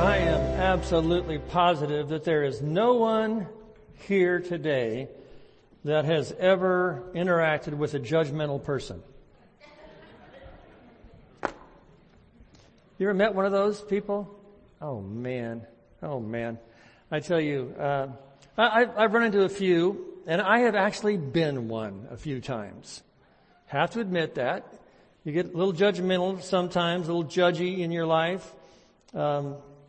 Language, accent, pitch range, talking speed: English, American, 150-195 Hz, 135 wpm